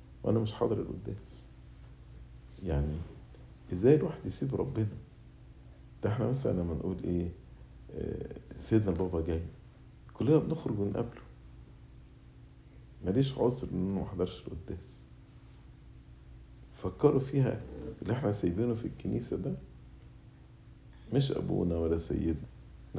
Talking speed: 100 wpm